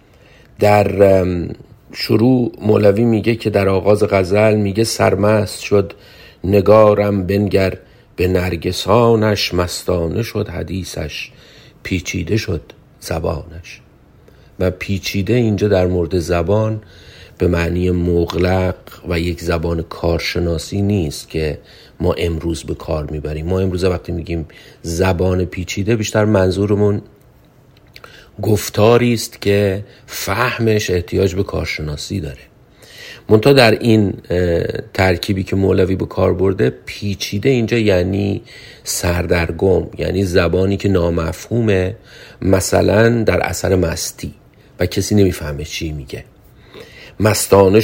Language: Persian